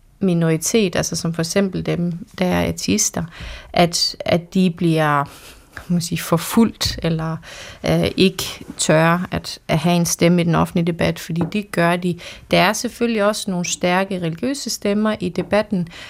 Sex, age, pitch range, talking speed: female, 30-49, 170-195 Hz, 155 wpm